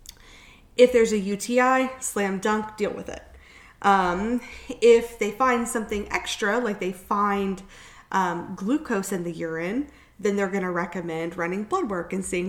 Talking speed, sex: 160 wpm, female